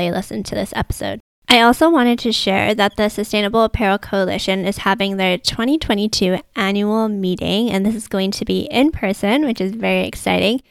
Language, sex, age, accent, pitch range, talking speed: English, female, 10-29, American, 190-225 Hz, 180 wpm